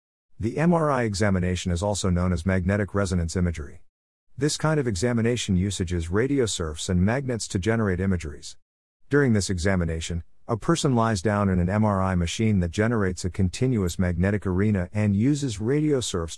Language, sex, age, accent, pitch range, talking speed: English, male, 50-69, American, 90-115 Hz, 155 wpm